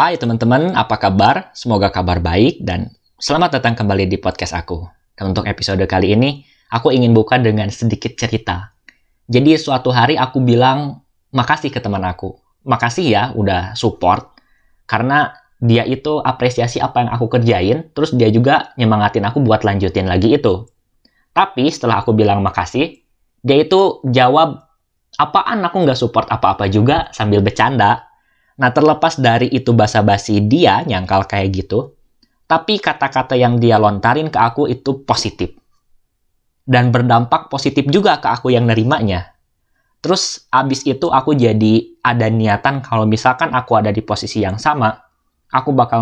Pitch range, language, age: 100-130 Hz, Indonesian, 20-39